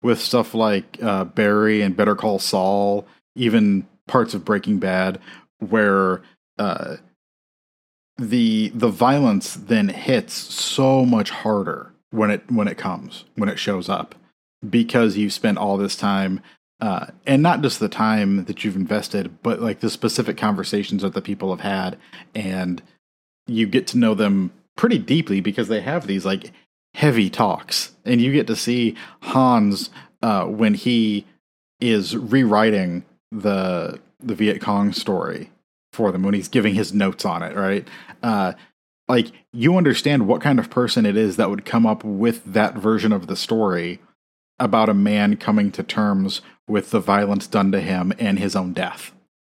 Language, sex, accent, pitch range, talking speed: English, male, American, 100-125 Hz, 165 wpm